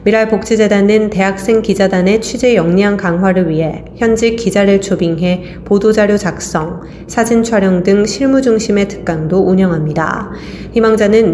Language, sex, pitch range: Korean, female, 175-220 Hz